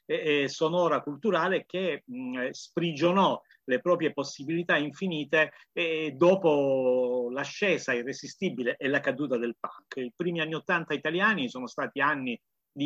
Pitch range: 125-175 Hz